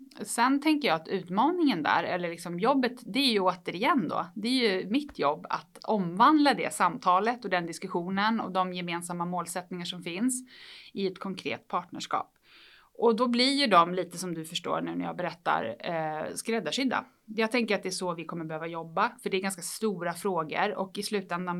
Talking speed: 195 wpm